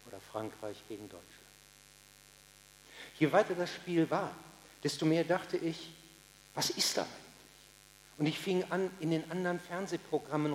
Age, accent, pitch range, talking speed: 60-79, German, 150-200 Hz, 140 wpm